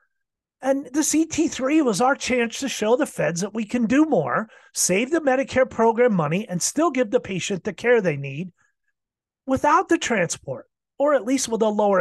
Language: English